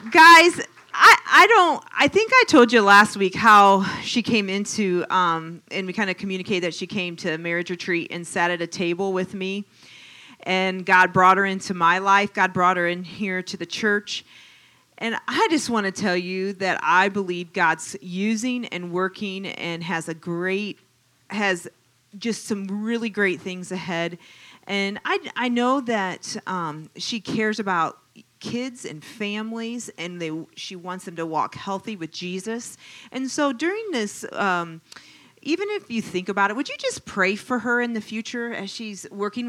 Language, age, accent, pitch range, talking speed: English, 40-59, American, 180-225 Hz, 180 wpm